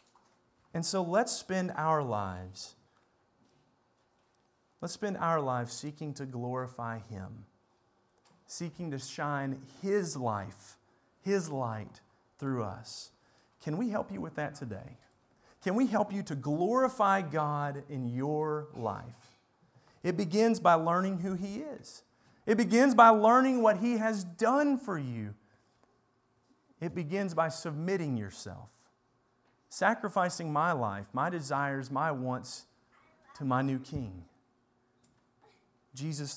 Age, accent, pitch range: 40-59, American, 125-195 Hz